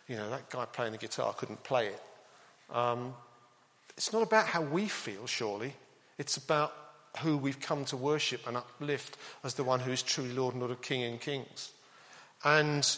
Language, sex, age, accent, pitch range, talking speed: English, male, 50-69, British, 120-150 Hz, 190 wpm